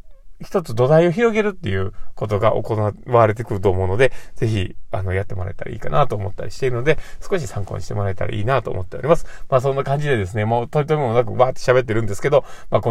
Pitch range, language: 105-135 Hz, Japanese